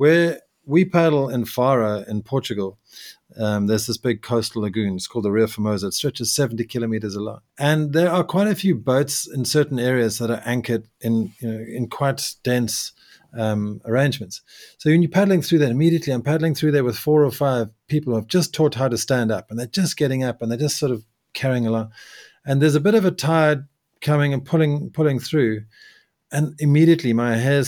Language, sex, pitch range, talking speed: English, male, 110-150 Hz, 210 wpm